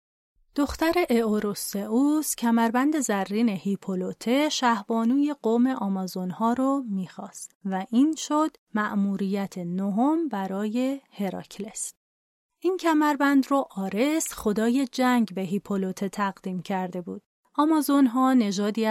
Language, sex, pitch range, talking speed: Persian, female, 195-265 Hz, 95 wpm